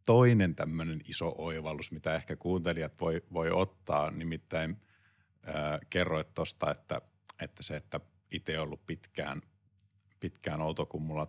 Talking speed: 130 wpm